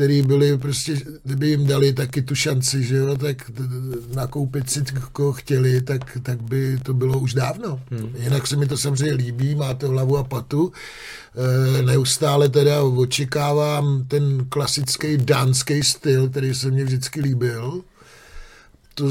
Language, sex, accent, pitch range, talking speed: Czech, male, native, 130-150 Hz, 150 wpm